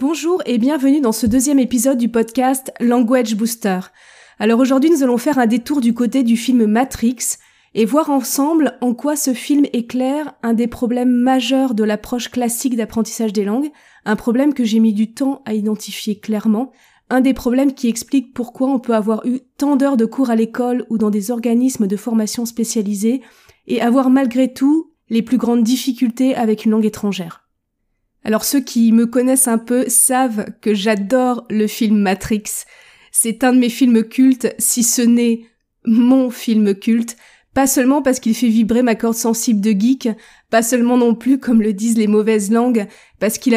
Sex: female